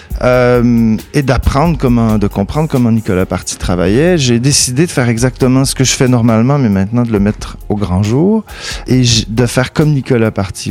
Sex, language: male, French